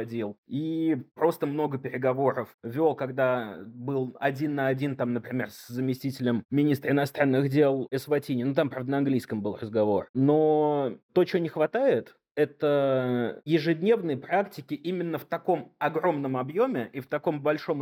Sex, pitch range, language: male, 125-165 Hz, Russian